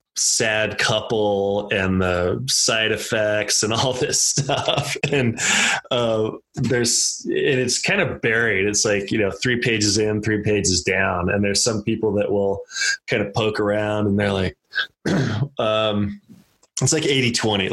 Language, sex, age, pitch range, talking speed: English, male, 20-39, 100-125 Hz, 150 wpm